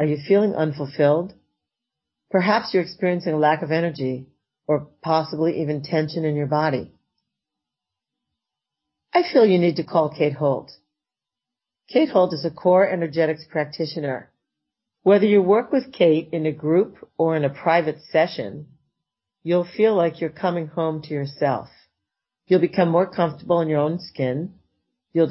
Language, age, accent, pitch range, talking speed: English, 50-69, American, 145-175 Hz, 150 wpm